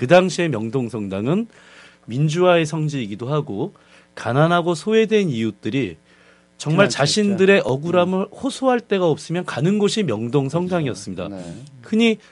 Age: 30-49